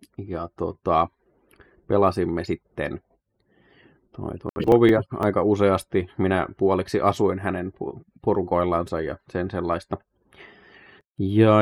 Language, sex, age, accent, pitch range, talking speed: Finnish, male, 30-49, native, 90-105 Hz, 95 wpm